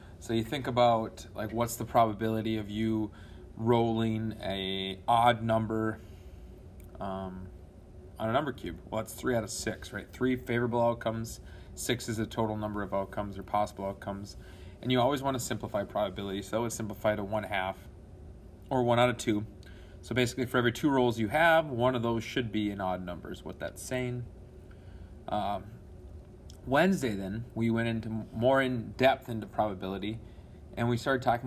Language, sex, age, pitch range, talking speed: English, male, 30-49, 95-120 Hz, 175 wpm